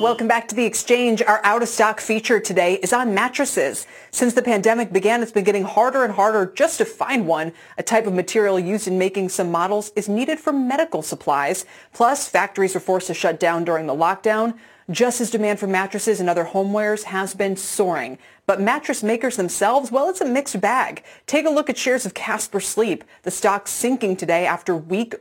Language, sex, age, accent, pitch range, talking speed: English, female, 30-49, American, 185-240 Hz, 200 wpm